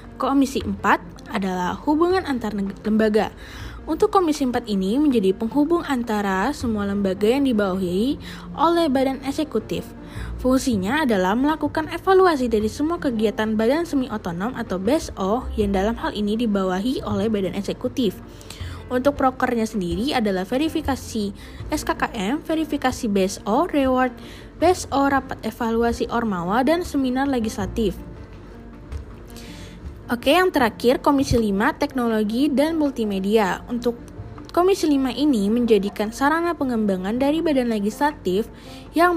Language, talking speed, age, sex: Indonesian, 115 wpm, 20-39, female